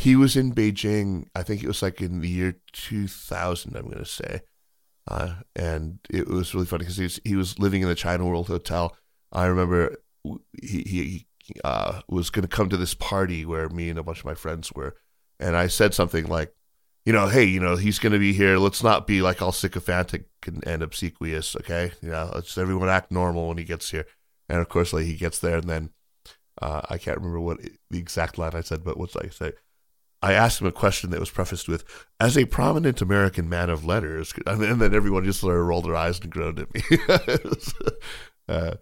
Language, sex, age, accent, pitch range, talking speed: English, male, 30-49, American, 85-100 Hz, 220 wpm